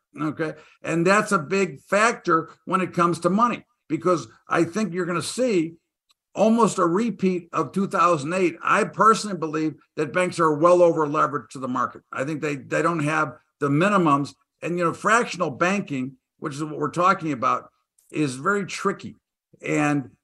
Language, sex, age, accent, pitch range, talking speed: English, male, 50-69, American, 155-190 Hz, 170 wpm